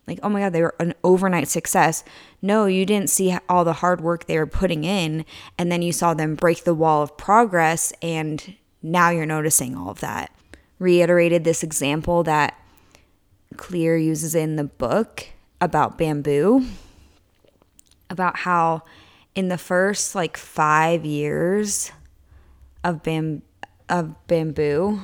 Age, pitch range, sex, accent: 20-39, 150-195 Hz, female, American